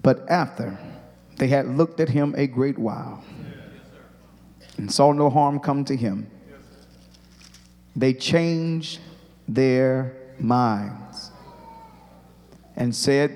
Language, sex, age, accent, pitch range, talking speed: English, male, 30-49, American, 105-125 Hz, 105 wpm